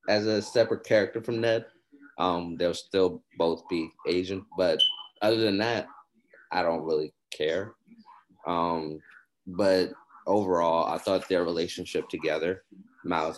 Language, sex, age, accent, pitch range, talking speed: English, male, 20-39, American, 90-110 Hz, 130 wpm